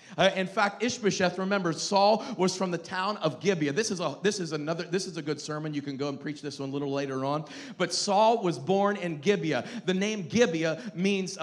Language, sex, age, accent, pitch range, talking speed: English, male, 40-59, American, 170-210 Hz, 230 wpm